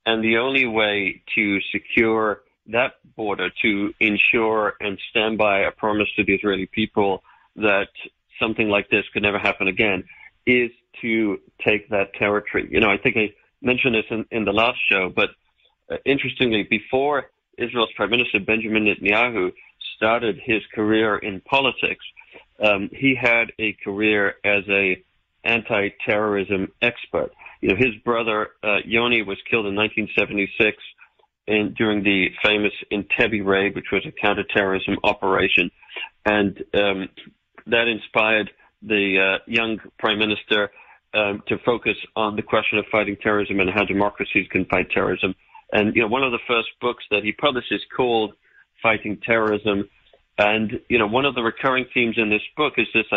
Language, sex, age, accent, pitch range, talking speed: English, male, 40-59, American, 100-115 Hz, 155 wpm